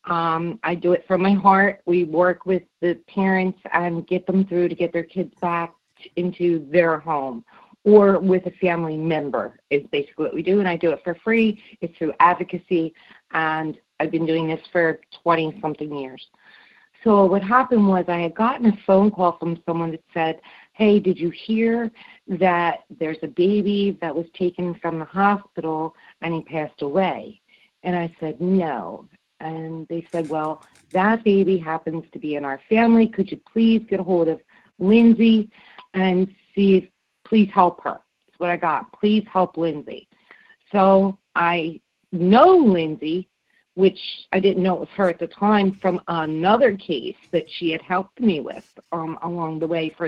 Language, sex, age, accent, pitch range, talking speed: English, female, 40-59, American, 165-200 Hz, 175 wpm